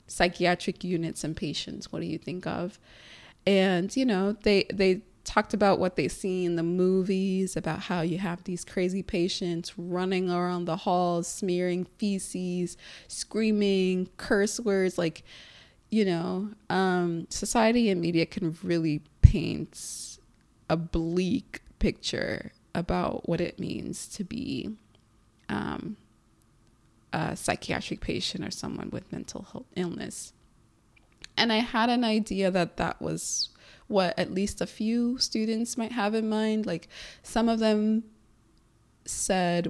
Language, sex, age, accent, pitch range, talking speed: English, female, 20-39, American, 165-205 Hz, 135 wpm